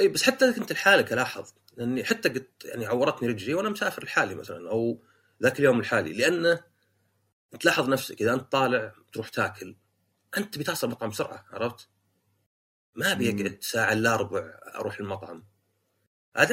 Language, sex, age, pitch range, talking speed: Arabic, male, 30-49, 100-130 Hz, 145 wpm